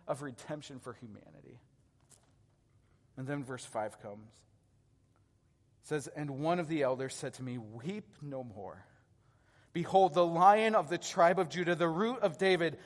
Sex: male